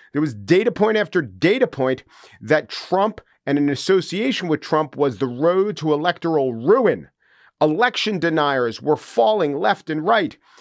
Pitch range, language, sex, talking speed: 140-205 Hz, English, male, 155 wpm